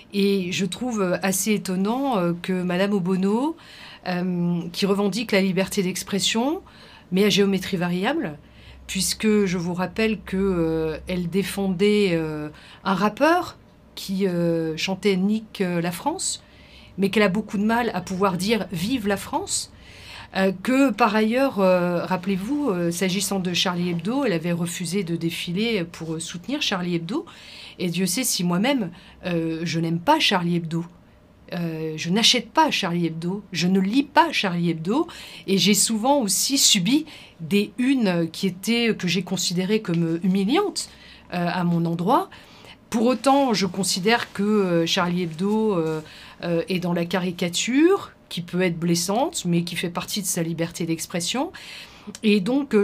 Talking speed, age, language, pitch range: 155 wpm, 50-69, French, 175-215 Hz